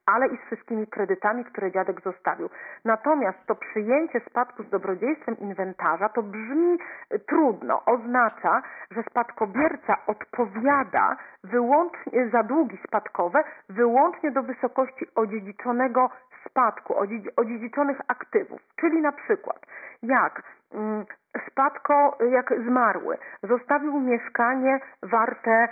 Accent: native